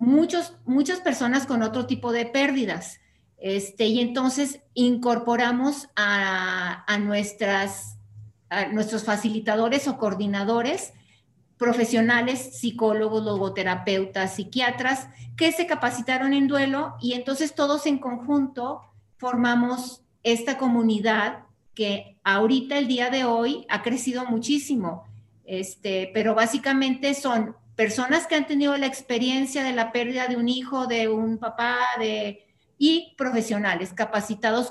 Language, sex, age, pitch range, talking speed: Spanish, female, 40-59, 210-255 Hz, 110 wpm